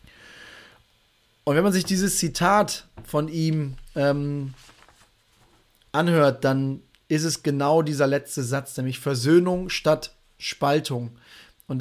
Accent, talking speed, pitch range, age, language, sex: German, 110 wpm, 135-175 Hz, 30-49, German, male